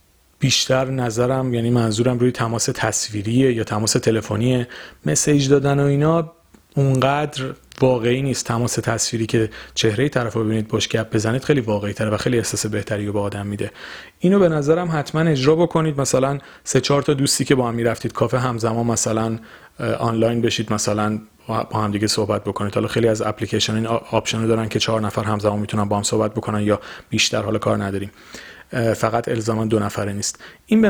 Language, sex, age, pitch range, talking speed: Persian, male, 30-49, 110-140 Hz, 175 wpm